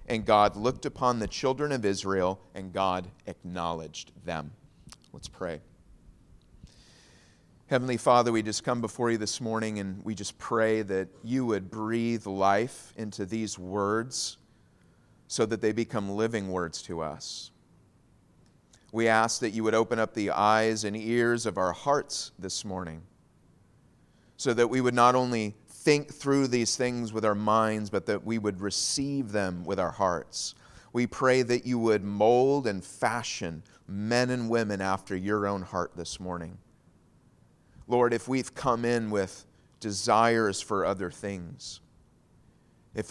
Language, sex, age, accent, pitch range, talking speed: English, male, 30-49, American, 95-120 Hz, 150 wpm